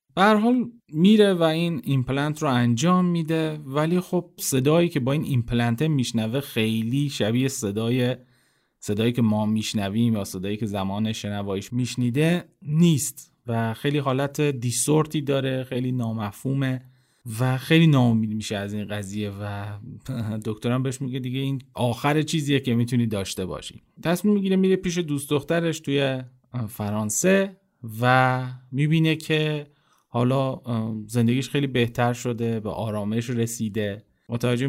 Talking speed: 130 wpm